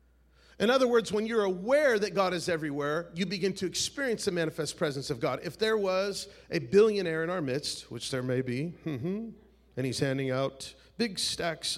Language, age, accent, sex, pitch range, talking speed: English, 40-59, American, male, 150-245 Hz, 190 wpm